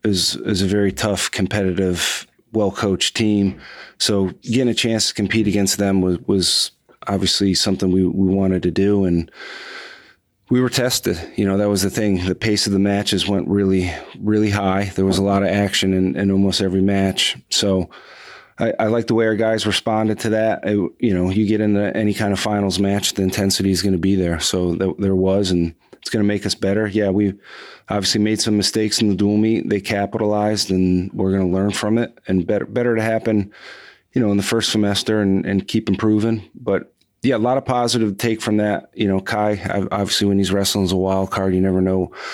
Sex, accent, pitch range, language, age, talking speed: male, American, 95-105 Hz, English, 30-49, 215 wpm